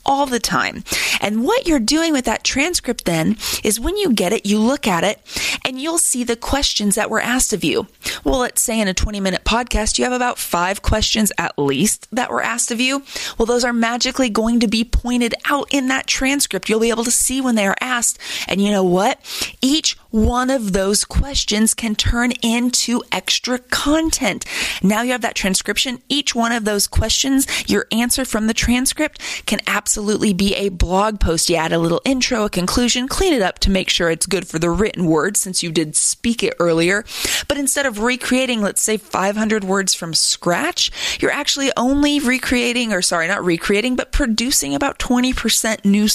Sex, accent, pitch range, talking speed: female, American, 185-250 Hz, 200 wpm